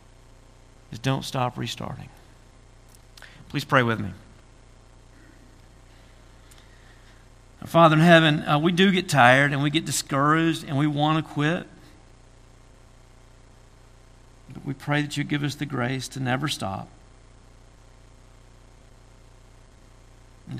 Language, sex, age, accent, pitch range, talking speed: English, male, 50-69, American, 120-135 Hz, 110 wpm